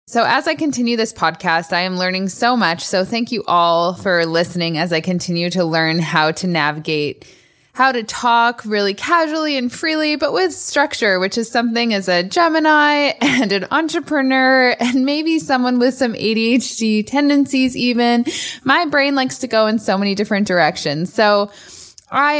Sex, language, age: female, English, 20-39